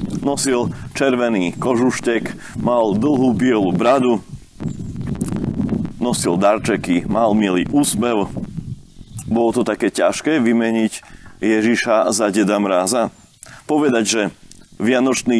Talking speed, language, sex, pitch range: 95 wpm, Slovak, male, 105-125 Hz